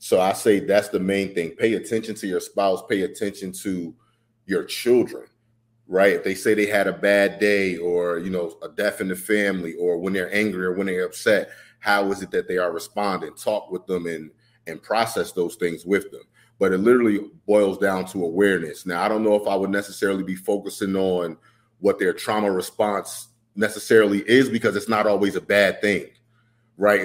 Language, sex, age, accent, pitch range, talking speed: English, male, 30-49, American, 95-110 Hz, 200 wpm